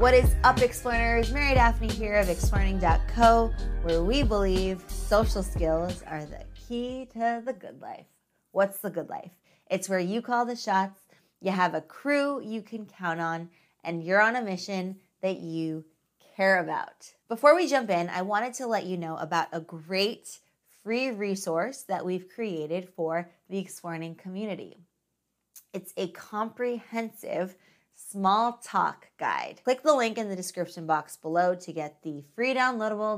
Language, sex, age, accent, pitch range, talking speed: English, female, 20-39, American, 175-230 Hz, 160 wpm